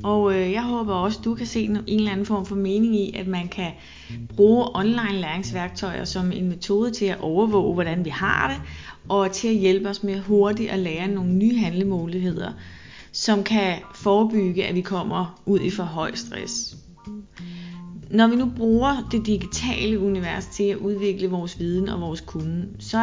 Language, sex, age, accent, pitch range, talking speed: Danish, female, 30-49, native, 175-210 Hz, 180 wpm